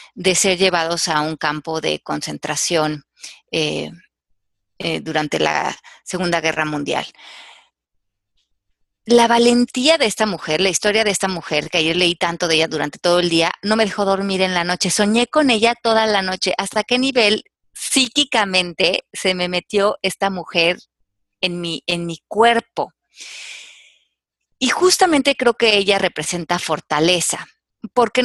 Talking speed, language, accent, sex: 145 wpm, Spanish, Mexican, female